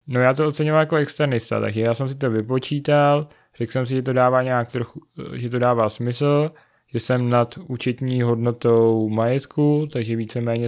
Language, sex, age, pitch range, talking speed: Czech, male, 20-39, 115-125 Hz, 175 wpm